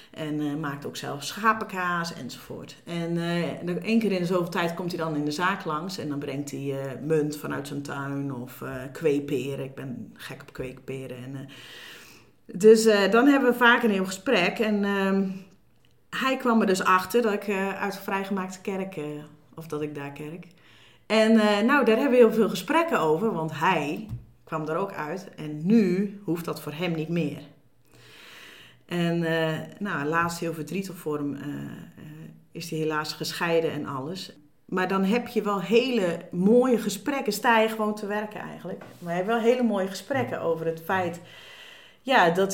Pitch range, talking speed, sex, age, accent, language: 150-200 Hz, 185 wpm, female, 40-59, Dutch, Dutch